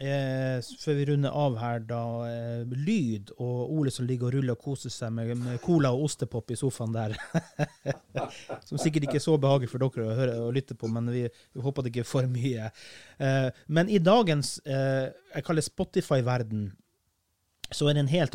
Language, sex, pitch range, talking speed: English, male, 120-160 Hz, 195 wpm